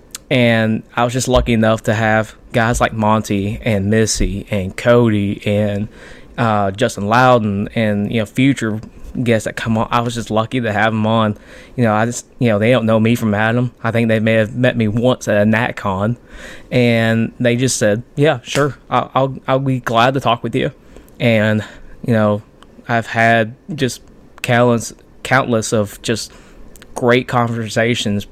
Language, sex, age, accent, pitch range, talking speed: English, male, 20-39, American, 105-120 Hz, 180 wpm